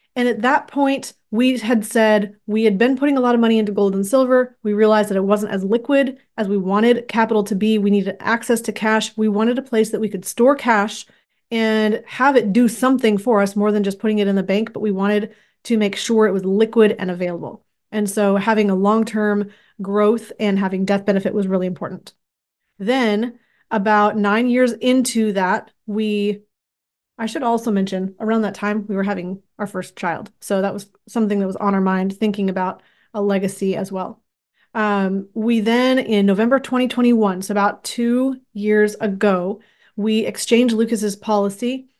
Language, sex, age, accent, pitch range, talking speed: English, female, 30-49, American, 200-230 Hz, 195 wpm